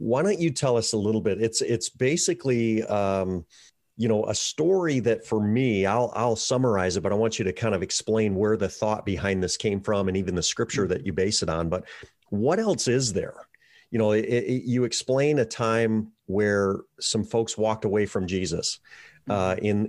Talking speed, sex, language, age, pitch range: 210 wpm, male, English, 40-59, 105-140 Hz